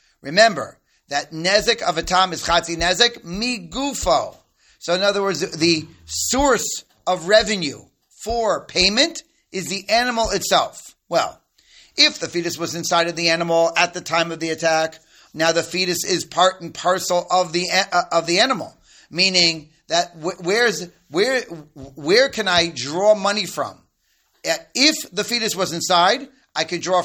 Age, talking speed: 40-59, 155 wpm